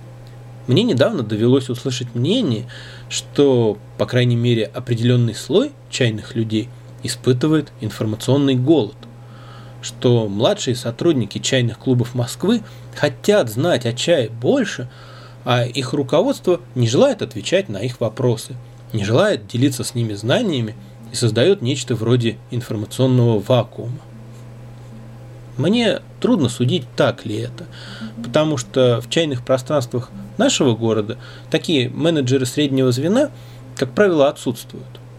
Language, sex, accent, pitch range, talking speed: Russian, male, native, 115-135 Hz, 115 wpm